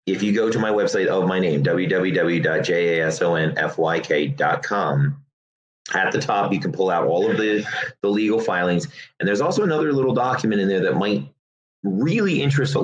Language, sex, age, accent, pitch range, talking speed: English, male, 30-49, American, 90-140 Hz, 170 wpm